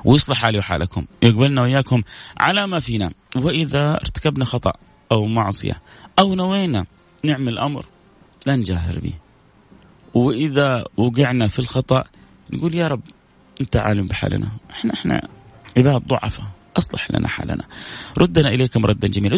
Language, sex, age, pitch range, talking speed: Arabic, male, 30-49, 115-150 Hz, 125 wpm